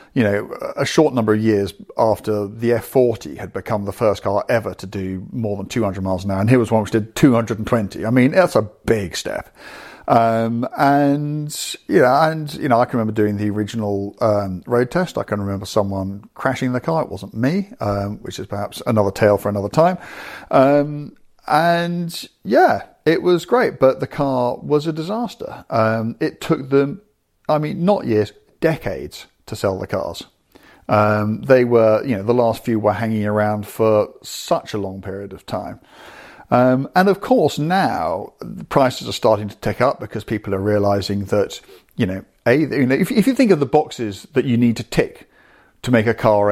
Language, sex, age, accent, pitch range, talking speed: English, male, 50-69, British, 105-140 Hz, 195 wpm